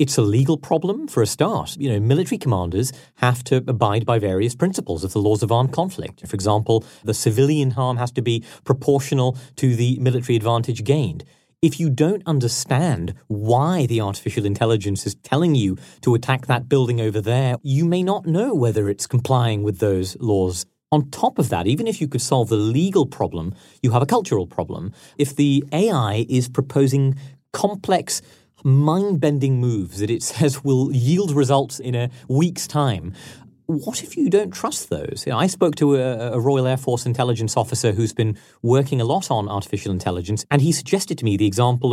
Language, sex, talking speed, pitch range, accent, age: English, male, 185 wpm, 115-145 Hz, British, 40-59